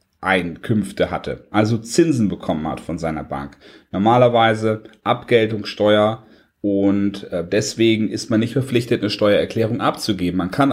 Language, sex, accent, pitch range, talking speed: German, male, German, 100-130 Hz, 125 wpm